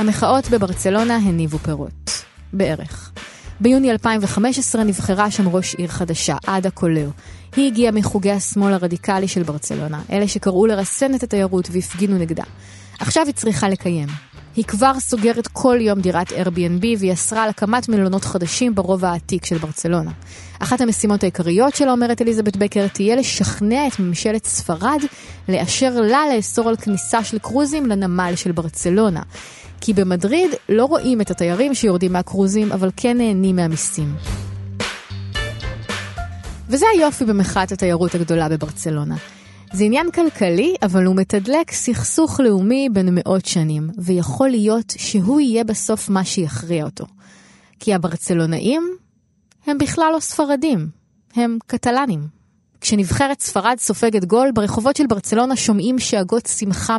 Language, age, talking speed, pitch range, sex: Hebrew, 20-39, 130 wpm, 175-235 Hz, female